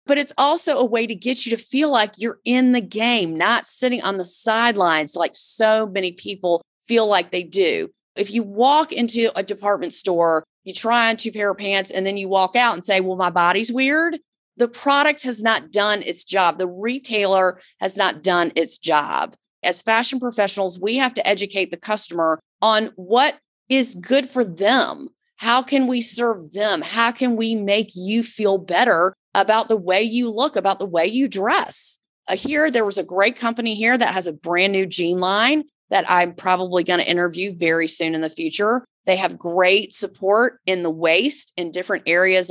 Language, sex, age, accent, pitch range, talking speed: English, female, 30-49, American, 185-240 Hz, 195 wpm